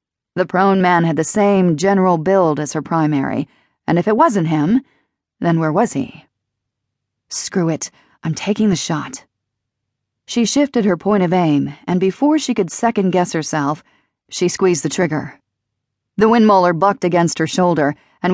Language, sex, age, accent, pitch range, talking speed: English, female, 40-59, American, 160-205 Hz, 160 wpm